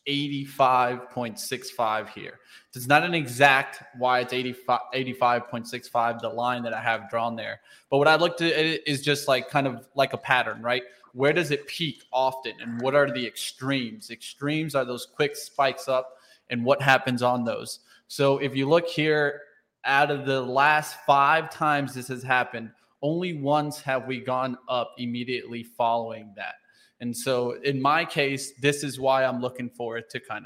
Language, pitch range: English, 125-145 Hz